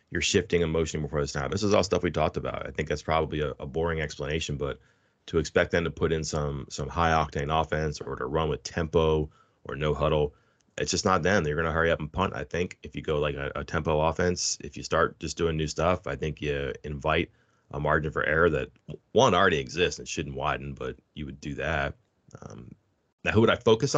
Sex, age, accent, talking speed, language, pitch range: male, 30-49, American, 235 wpm, English, 75-95 Hz